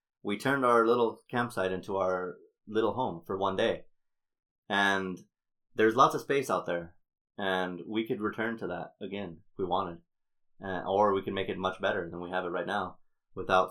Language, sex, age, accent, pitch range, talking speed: English, male, 30-49, American, 95-130 Hz, 190 wpm